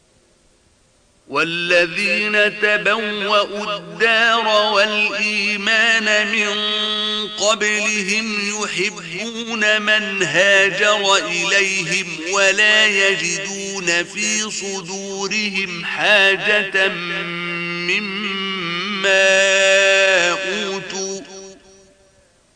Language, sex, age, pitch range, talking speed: Arabic, male, 50-69, 175-210 Hz, 45 wpm